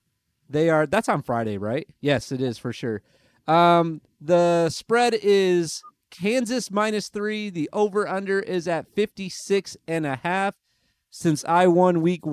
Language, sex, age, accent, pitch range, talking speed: English, male, 30-49, American, 145-190 Hz, 145 wpm